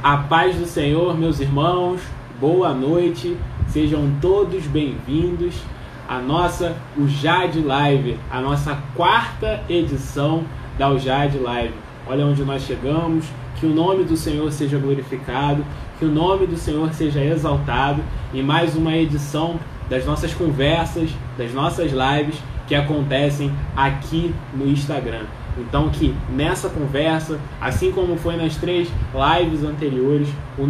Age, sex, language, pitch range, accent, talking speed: 20-39, male, Portuguese, 135-160 Hz, Brazilian, 130 wpm